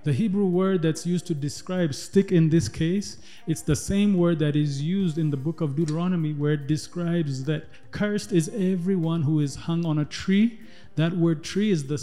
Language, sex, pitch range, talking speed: English, male, 150-180 Hz, 205 wpm